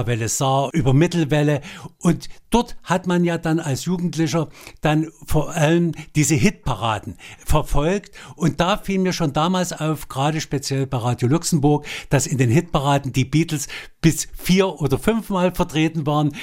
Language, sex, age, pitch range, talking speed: German, male, 60-79, 140-170 Hz, 155 wpm